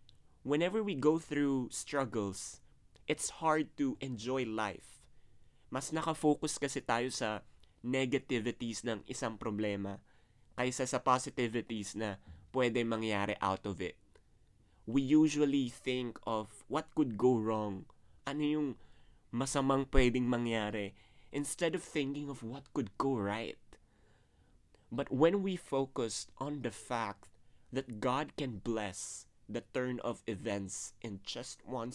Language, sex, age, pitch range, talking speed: English, male, 20-39, 105-130 Hz, 130 wpm